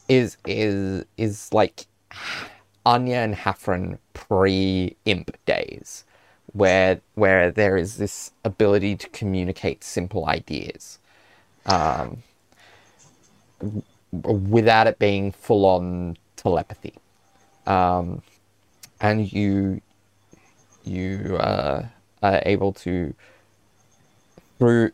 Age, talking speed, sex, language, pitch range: 20-39, 85 wpm, male, English, 95-110 Hz